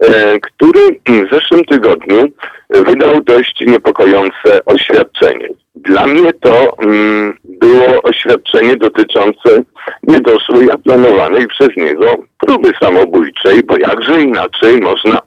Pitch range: 330-435 Hz